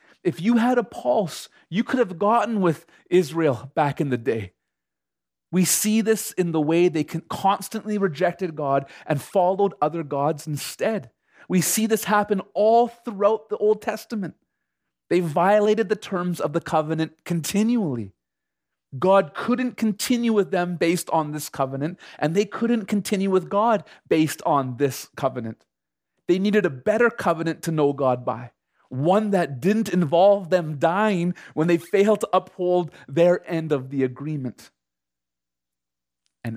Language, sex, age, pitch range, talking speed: English, male, 30-49, 135-200 Hz, 150 wpm